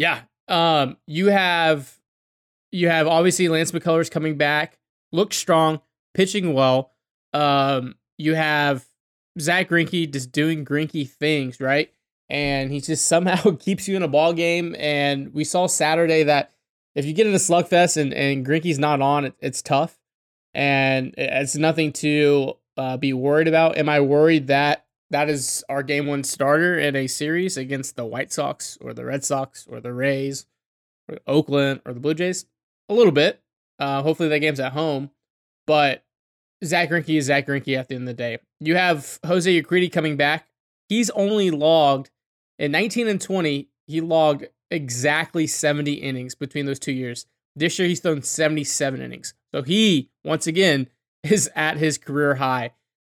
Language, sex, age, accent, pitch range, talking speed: English, male, 20-39, American, 140-165 Hz, 170 wpm